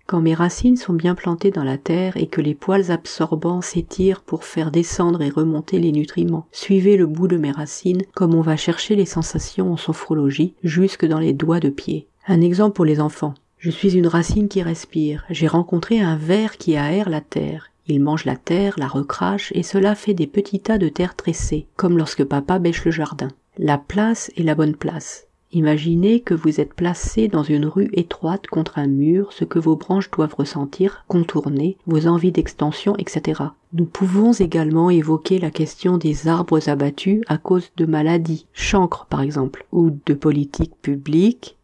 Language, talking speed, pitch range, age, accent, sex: French, 190 wpm, 150-185 Hz, 40-59, French, female